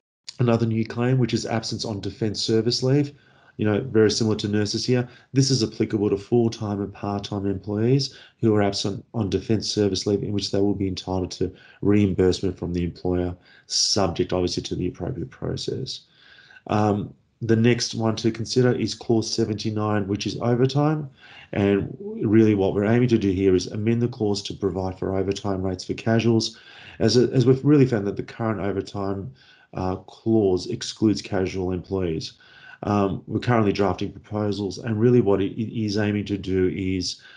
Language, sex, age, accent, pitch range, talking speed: English, male, 30-49, Australian, 95-115 Hz, 175 wpm